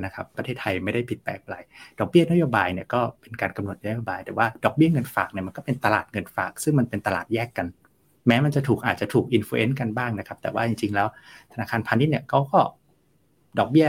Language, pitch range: Thai, 105-135 Hz